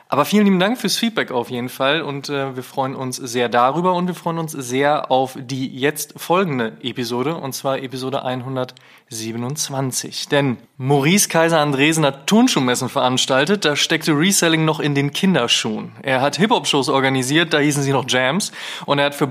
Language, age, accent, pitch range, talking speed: German, 20-39, German, 130-165 Hz, 175 wpm